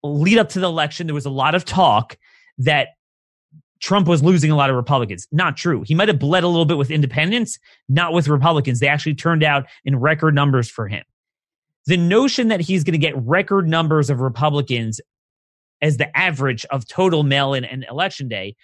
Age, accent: 30-49, American